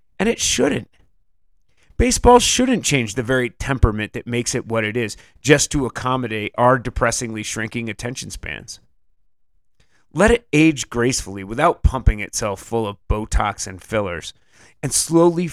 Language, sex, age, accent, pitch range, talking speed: English, male, 30-49, American, 105-130 Hz, 145 wpm